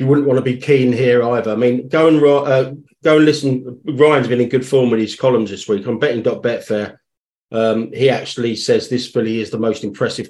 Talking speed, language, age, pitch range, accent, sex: 220 wpm, English, 40-59, 115-135 Hz, British, male